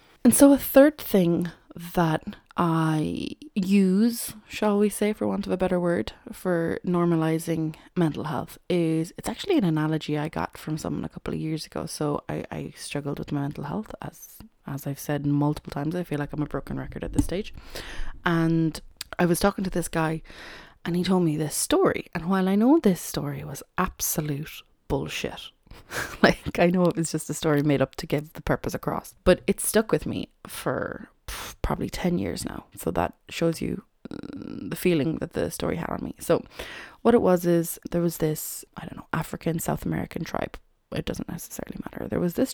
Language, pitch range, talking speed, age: English, 155-195 Hz, 195 wpm, 20-39